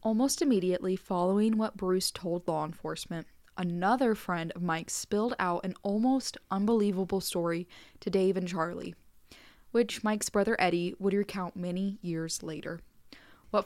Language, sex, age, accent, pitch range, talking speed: English, female, 10-29, American, 175-225 Hz, 140 wpm